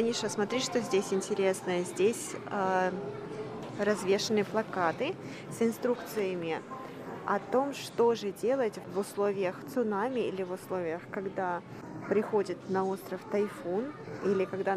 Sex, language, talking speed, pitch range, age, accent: female, Russian, 120 wpm, 185-210 Hz, 20-39, native